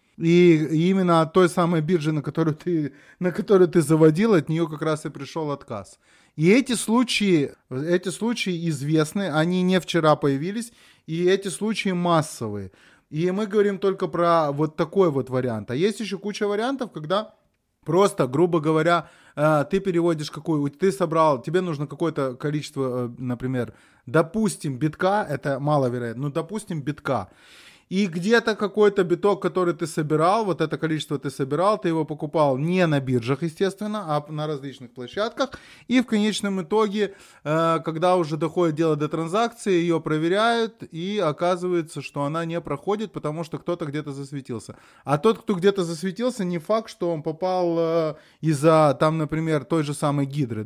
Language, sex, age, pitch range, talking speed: Russian, male, 20-39, 150-185 Hz, 155 wpm